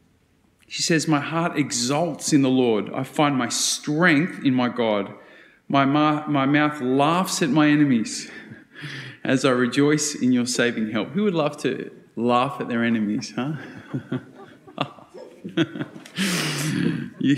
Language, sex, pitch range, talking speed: English, male, 120-160 Hz, 135 wpm